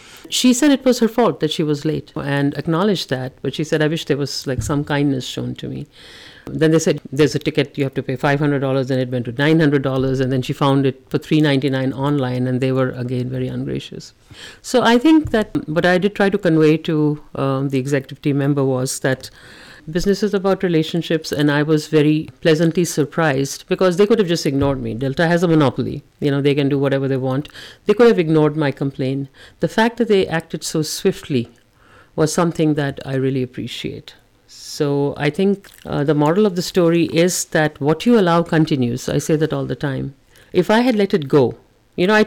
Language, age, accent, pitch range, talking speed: English, 50-69, Indian, 135-180 Hz, 220 wpm